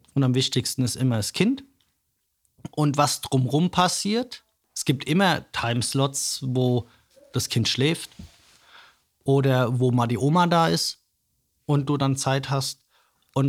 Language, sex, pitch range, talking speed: German, male, 125-160 Hz, 140 wpm